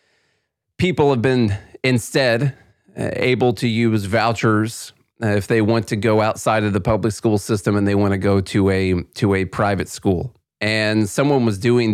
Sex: male